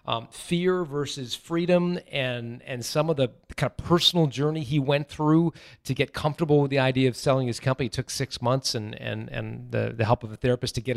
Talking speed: 225 wpm